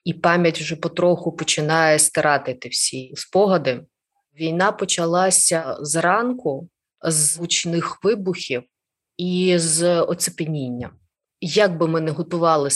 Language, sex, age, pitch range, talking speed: Ukrainian, female, 20-39, 145-170 Hz, 105 wpm